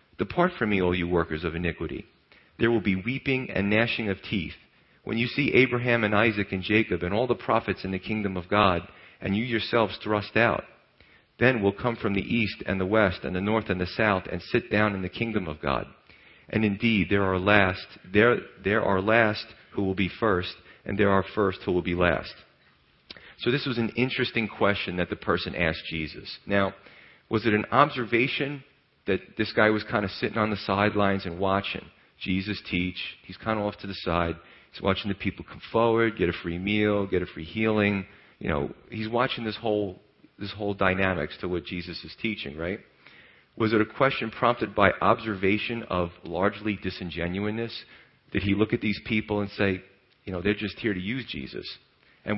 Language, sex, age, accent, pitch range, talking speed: English, male, 40-59, American, 90-110 Hz, 200 wpm